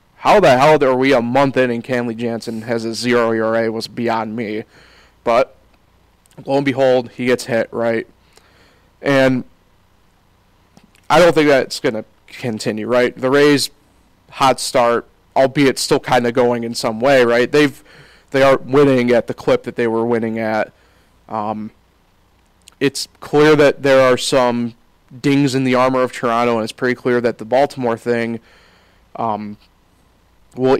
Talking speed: 165 wpm